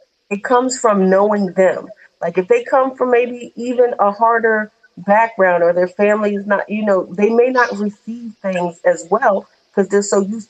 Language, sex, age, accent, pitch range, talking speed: English, female, 40-59, American, 185-225 Hz, 190 wpm